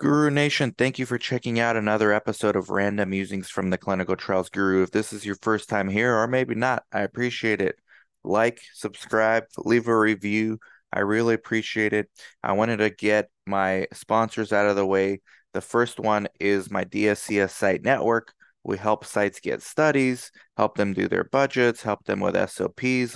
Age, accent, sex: 20-39, American, male